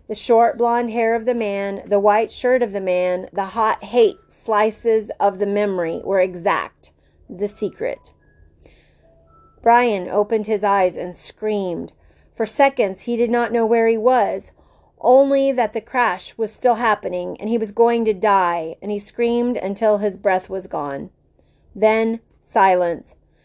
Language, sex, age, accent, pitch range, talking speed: English, female, 30-49, American, 200-245 Hz, 160 wpm